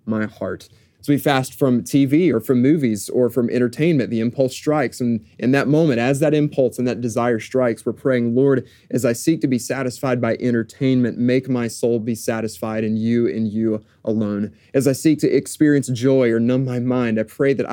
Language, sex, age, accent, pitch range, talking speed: English, male, 30-49, American, 115-135 Hz, 205 wpm